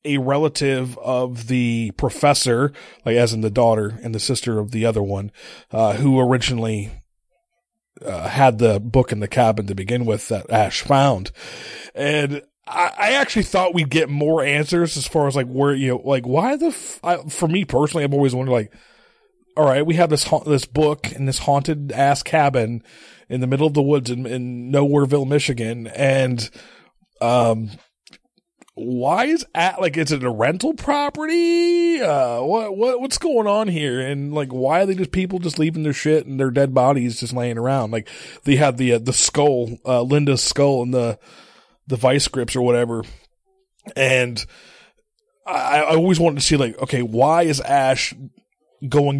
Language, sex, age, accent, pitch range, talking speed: English, male, 30-49, American, 125-165 Hz, 180 wpm